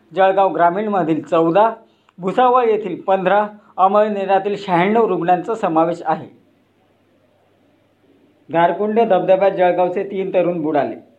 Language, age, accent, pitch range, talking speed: Marathi, 40-59, native, 175-210 Hz, 90 wpm